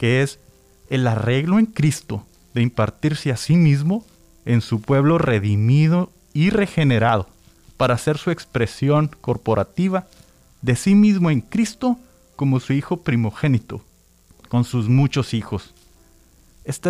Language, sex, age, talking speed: Spanish, male, 30-49, 130 wpm